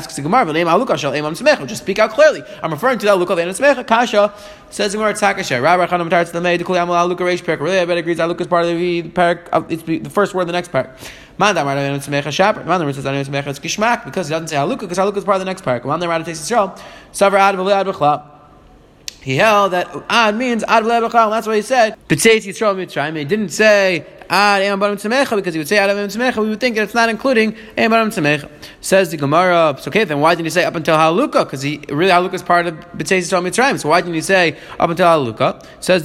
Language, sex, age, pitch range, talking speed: English, male, 20-39, 160-205 Hz, 170 wpm